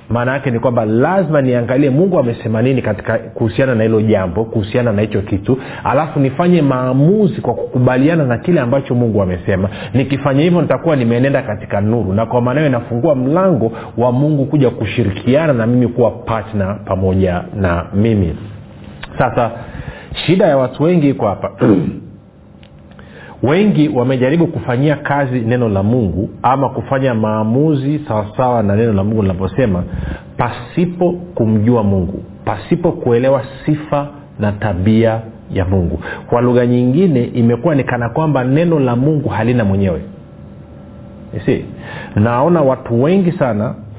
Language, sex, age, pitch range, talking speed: Swahili, male, 40-59, 110-140 Hz, 135 wpm